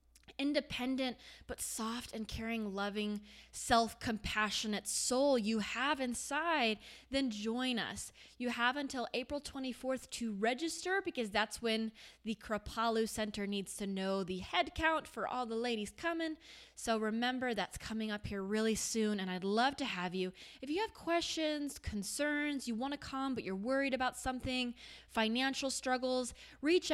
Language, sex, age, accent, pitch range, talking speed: English, female, 20-39, American, 205-270 Hz, 155 wpm